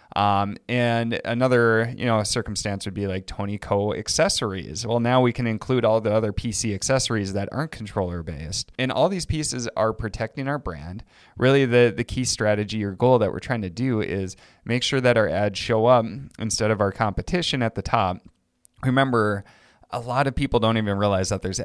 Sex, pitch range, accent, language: male, 100-120 Hz, American, English